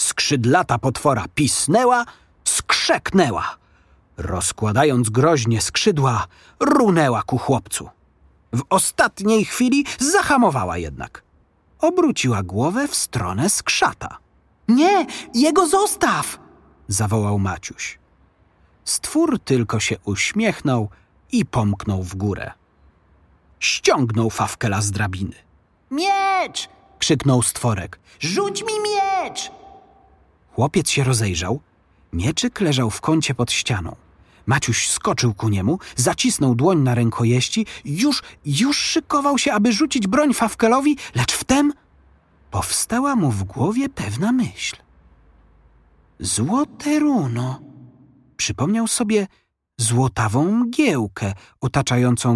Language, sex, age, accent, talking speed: Polish, male, 40-59, native, 95 wpm